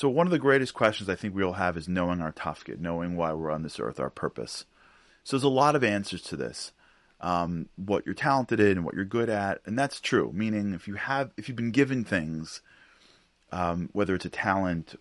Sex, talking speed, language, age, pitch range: male, 235 wpm, English, 30-49, 85-110 Hz